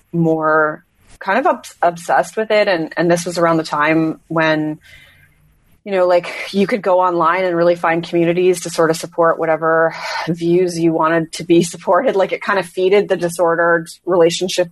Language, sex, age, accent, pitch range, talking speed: English, female, 30-49, American, 160-185 Hz, 180 wpm